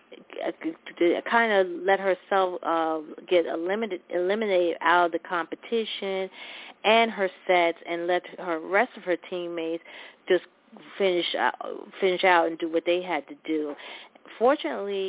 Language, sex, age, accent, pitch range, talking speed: English, female, 40-59, American, 175-230 Hz, 140 wpm